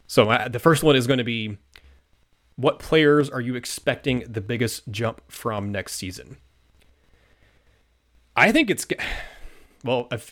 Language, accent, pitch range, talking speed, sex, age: English, American, 95-120 Hz, 140 wpm, male, 30-49